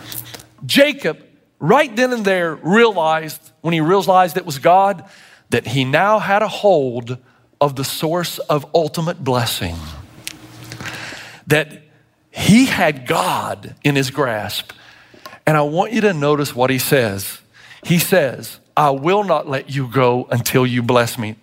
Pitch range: 135-205 Hz